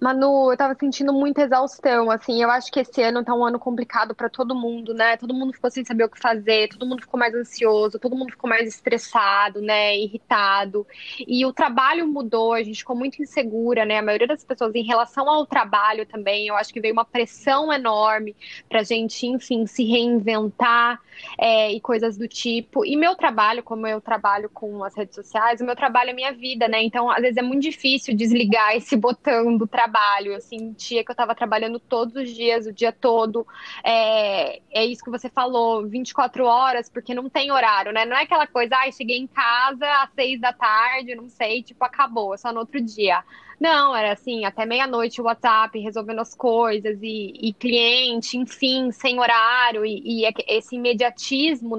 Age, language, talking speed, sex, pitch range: 10-29, Portuguese, 200 wpm, female, 225-255 Hz